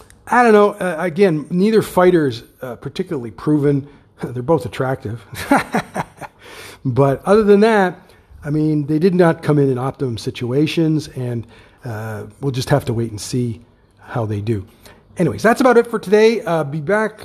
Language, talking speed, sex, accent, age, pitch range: English, 165 wpm, male, American, 50-69, 115-150 Hz